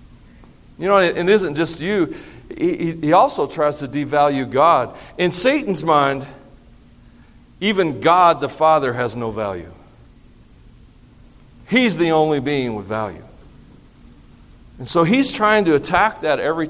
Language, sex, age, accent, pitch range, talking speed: English, male, 40-59, American, 130-170 Hz, 135 wpm